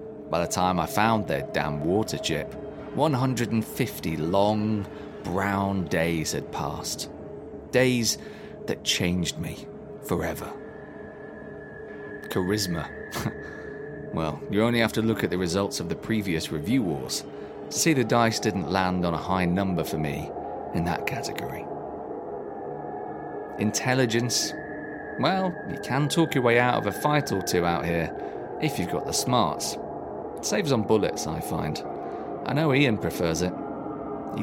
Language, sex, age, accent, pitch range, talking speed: English, male, 30-49, British, 95-130 Hz, 140 wpm